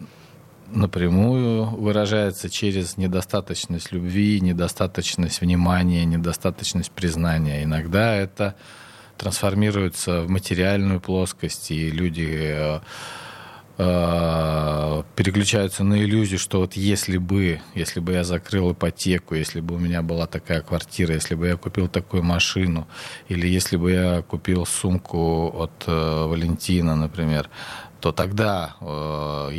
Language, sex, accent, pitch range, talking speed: Russian, male, native, 80-100 Hz, 115 wpm